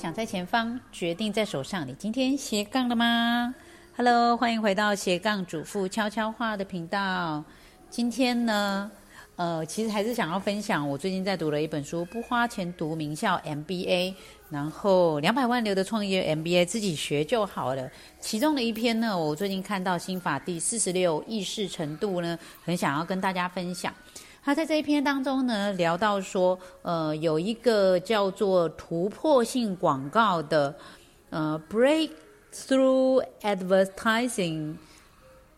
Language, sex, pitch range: Chinese, female, 165-225 Hz